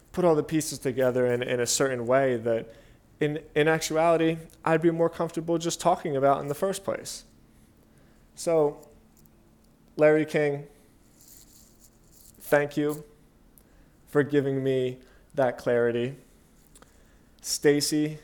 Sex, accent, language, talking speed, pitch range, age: male, American, English, 120 wpm, 120-150 Hz, 20-39